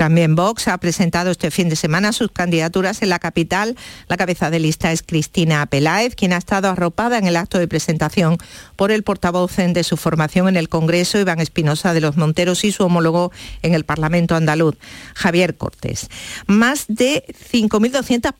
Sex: female